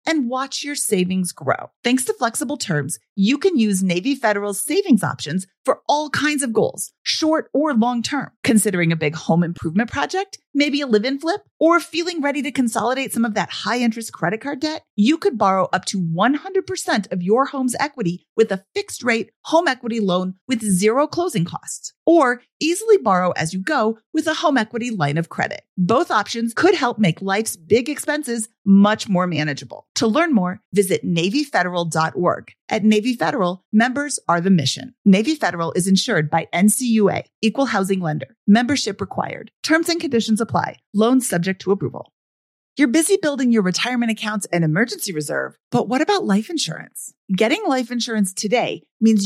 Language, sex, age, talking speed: English, female, 40-59, 170 wpm